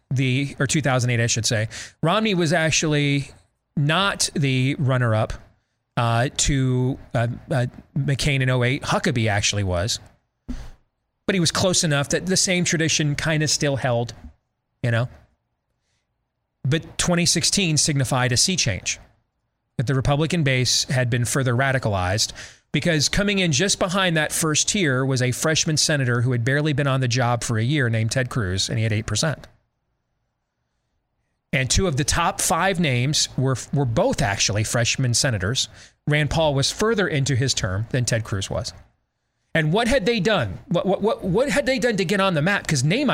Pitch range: 120-160 Hz